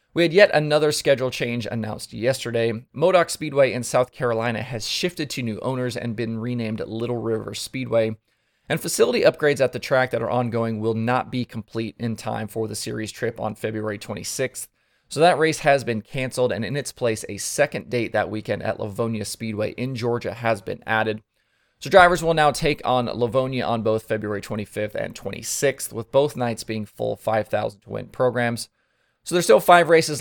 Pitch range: 110-135 Hz